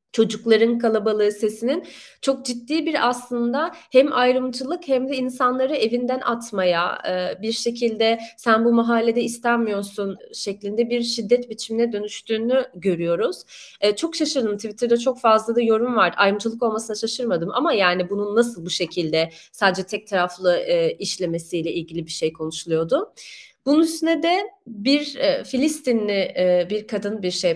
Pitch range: 185-250 Hz